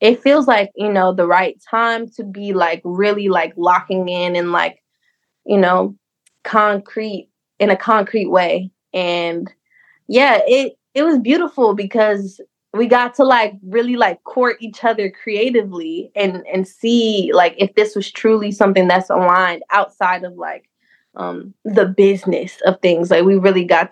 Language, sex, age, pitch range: English, female, 20-39, 180-215 Hz